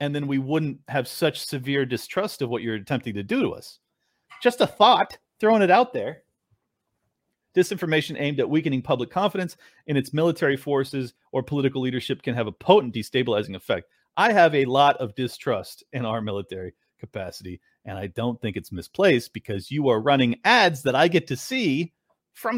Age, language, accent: 40-59, English, American